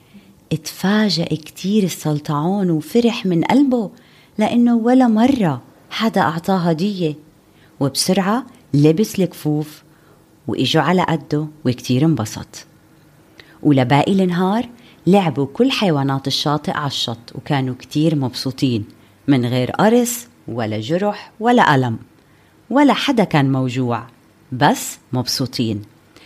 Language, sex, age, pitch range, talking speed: Arabic, female, 30-49, 135-220 Hz, 100 wpm